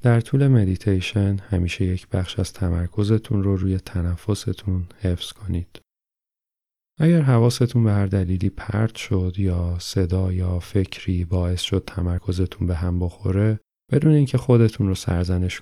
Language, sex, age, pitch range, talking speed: Persian, male, 30-49, 90-110 Hz, 135 wpm